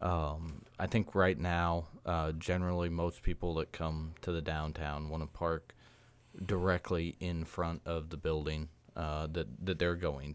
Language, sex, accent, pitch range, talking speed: English, male, American, 75-85 Hz, 155 wpm